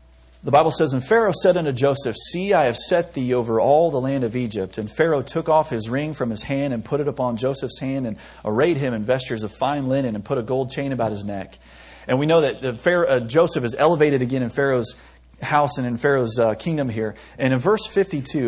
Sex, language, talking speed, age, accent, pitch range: male, English, 240 wpm, 40-59, American, 105-145 Hz